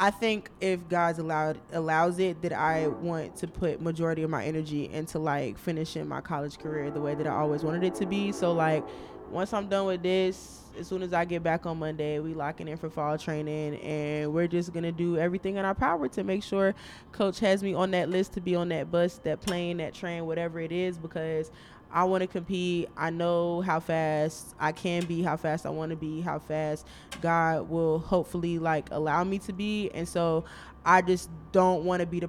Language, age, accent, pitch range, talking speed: English, 20-39, American, 155-180 Hz, 220 wpm